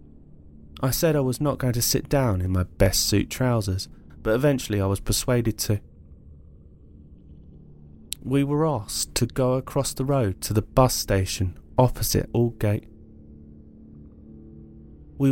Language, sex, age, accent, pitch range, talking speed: English, male, 30-49, British, 75-120 Hz, 135 wpm